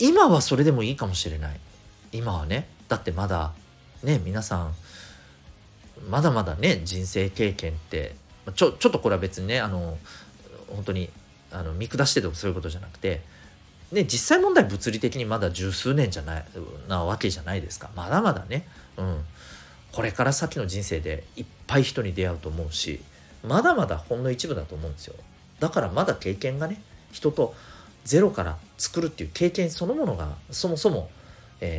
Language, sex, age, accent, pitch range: Japanese, male, 40-59, native, 80-140 Hz